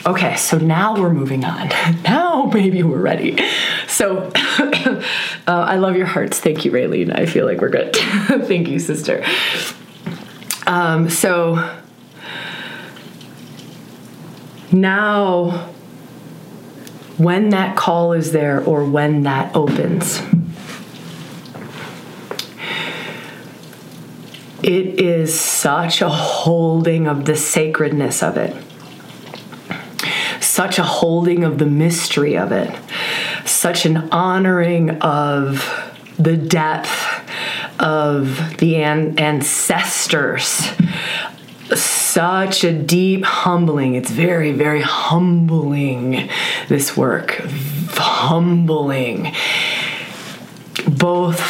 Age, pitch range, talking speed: 20-39, 155-180 Hz, 90 wpm